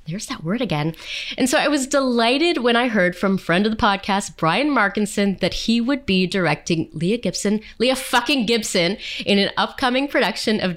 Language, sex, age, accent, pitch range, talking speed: English, female, 20-39, American, 165-220 Hz, 190 wpm